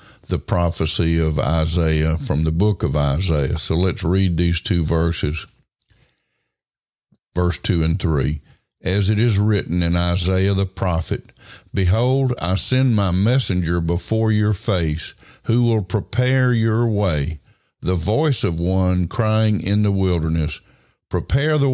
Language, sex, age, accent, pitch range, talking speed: English, male, 60-79, American, 85-105 Hz, 140 wpm